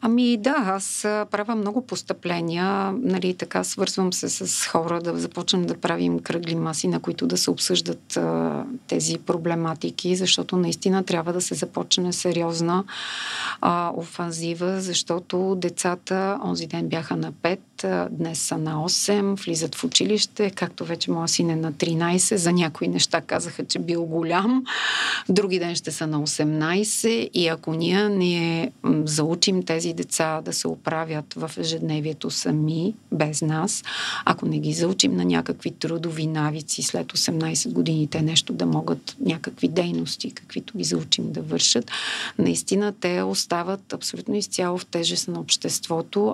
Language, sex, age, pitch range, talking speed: Bulgarian, female, 40-59, 155-190 Hz, 145 wpm